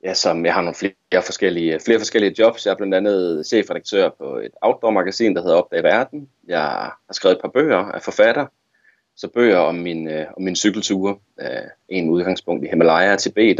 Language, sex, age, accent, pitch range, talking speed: Danish, male, 30-49, native, 85-115 Hz, 200 wpm